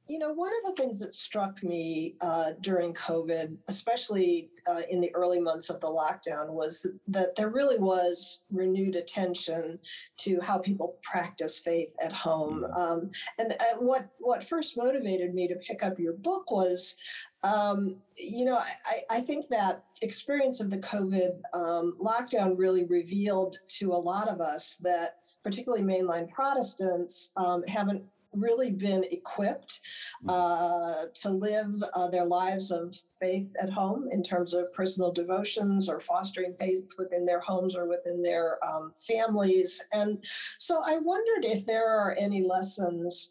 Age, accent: 50-69, American